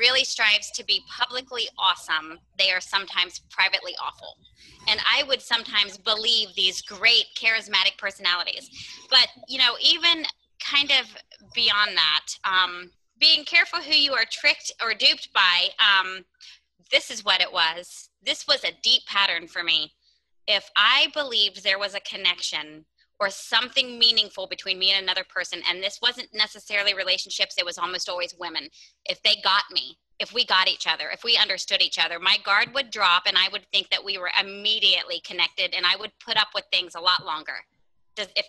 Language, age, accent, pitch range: English, 20-39, American, 190-250 Hz